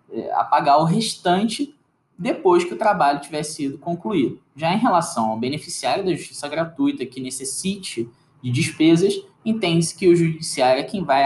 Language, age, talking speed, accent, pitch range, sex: Portuguese, 10-29, 155 wpm, Brazilian, 140-200 Hz, male